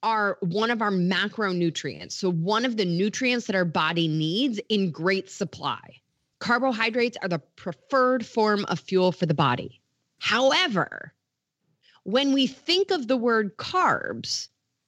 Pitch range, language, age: 165-235 Hz, English, 30-49